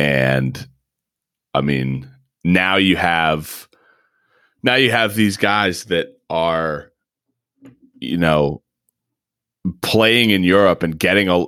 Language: English